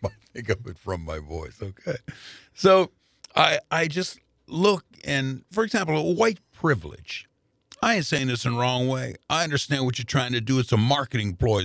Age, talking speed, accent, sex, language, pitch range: 50-69, 190 wpm, American, male, English, 105-140 Hz